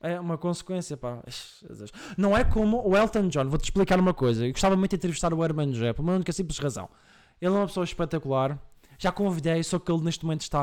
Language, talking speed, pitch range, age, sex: Portuguese, 225 wpm, 135-195 Hz, 20-39, male